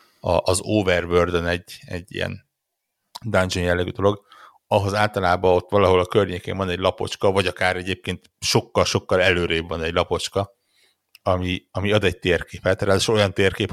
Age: 60-79